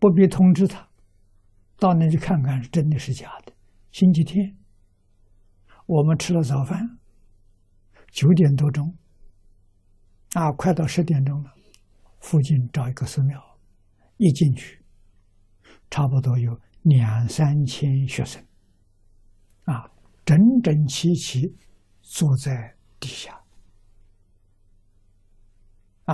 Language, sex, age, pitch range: Chinese, male, 60-79, 95-140 Hz